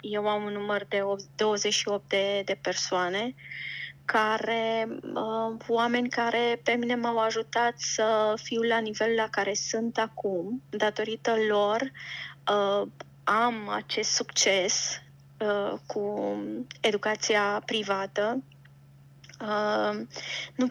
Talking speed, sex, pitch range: 90 wpm, female, 200-225 Hz